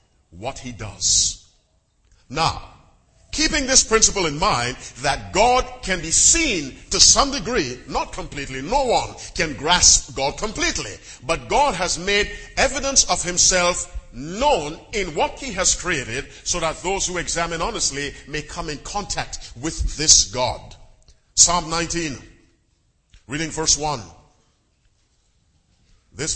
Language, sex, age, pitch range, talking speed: English, male, 50-69, 110-165 Hz, 130 wpm